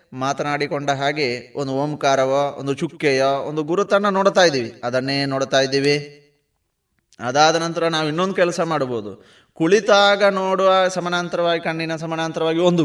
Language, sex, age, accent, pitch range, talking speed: Kannada, male, 20-39, native, 145-195 Hz, 115 wpm